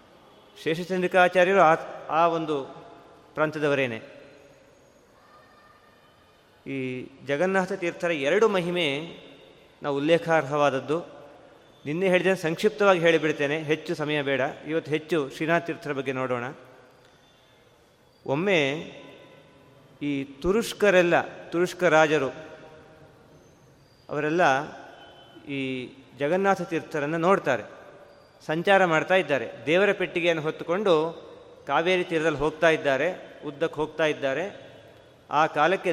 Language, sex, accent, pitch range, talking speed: Kannada, male, native, 145-175 Hz, 85 wpm